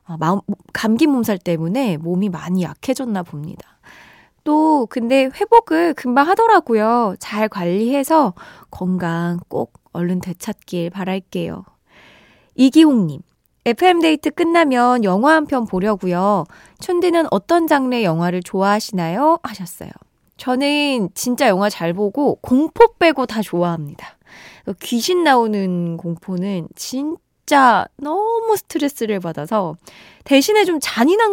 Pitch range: 180-280 Hz